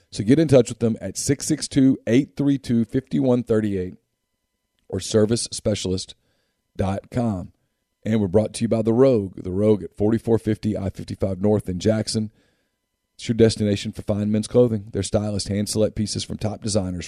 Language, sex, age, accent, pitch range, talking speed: English, male, 40-59, American, 105-120 Hz, 140 wpm